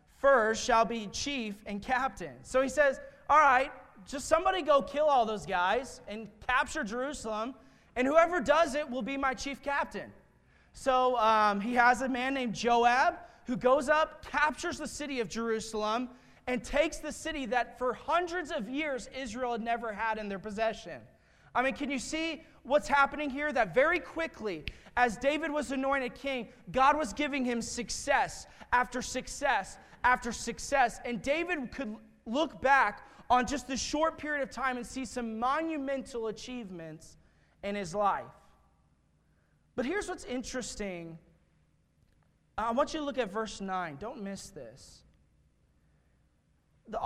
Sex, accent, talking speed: male, American, 155 wpm